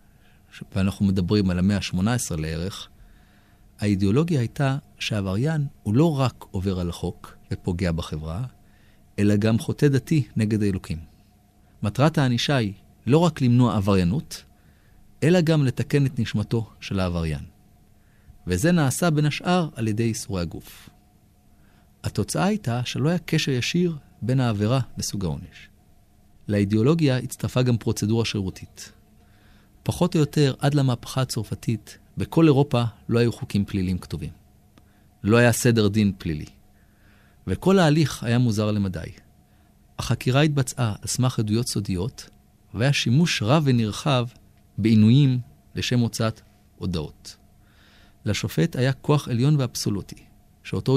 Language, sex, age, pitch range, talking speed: Hebrew, male, 40-59, 100-125 Hz, 120 wpm